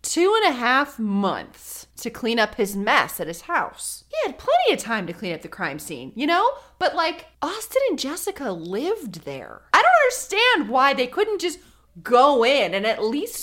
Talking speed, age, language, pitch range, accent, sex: 200 wpm, 30-49, English, 175-255 Hz, American, female